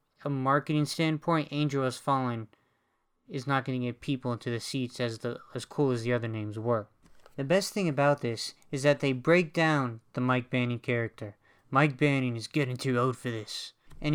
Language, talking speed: English, 200 wpm